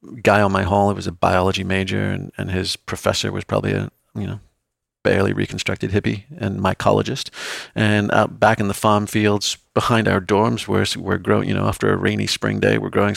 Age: 40-59